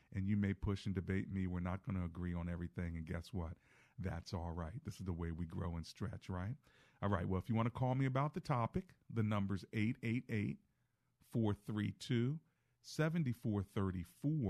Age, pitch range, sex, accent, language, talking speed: 50-69, 95-115 Hz, male, American, English, 180 wpm